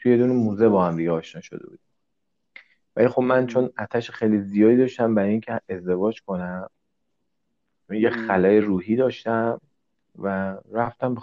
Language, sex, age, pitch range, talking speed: Persian, male, 40-59, 90-115 Hz, 155 wpm